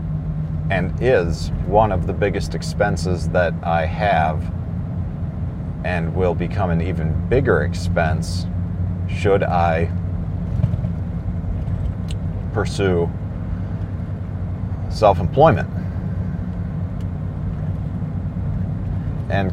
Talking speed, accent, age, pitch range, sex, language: 70 wpm, American, 40-59, 85-100 Hz, male, English